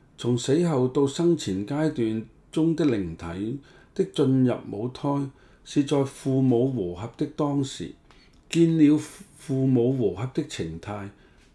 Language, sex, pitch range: Chinese, male, 110-150 Hz